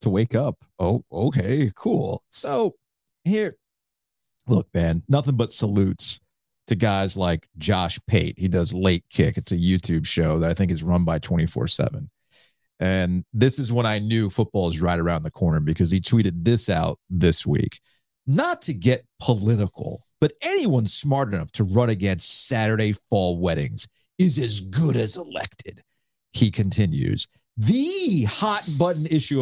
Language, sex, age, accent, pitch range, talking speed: English, male, 40-59, American, 95-135 Hz, 155 wpm